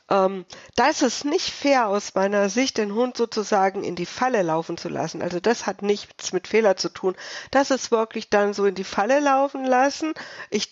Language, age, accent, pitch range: German, 50-69, German, 195-255 Hz